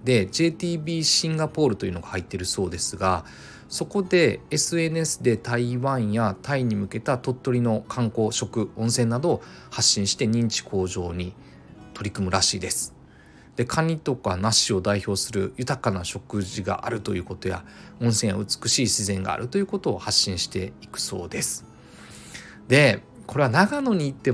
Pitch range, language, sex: 100-145 Hz, Japanese, male